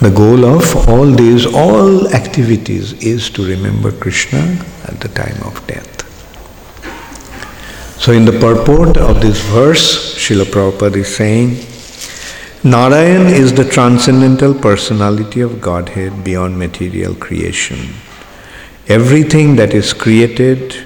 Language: English